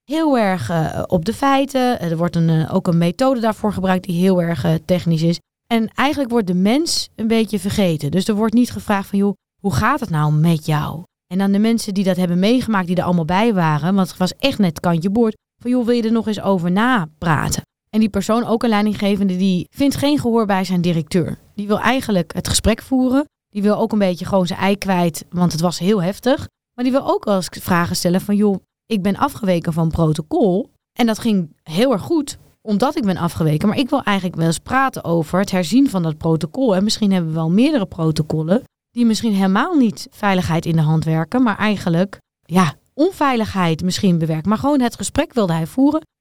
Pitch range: 175-230 Hz